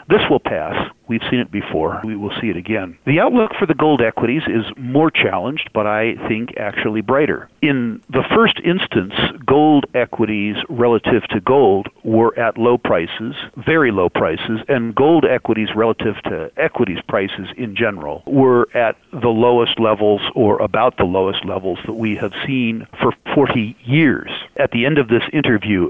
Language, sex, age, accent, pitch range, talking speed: English, male, 50-69, American, 110-130 Hz, 170 wpm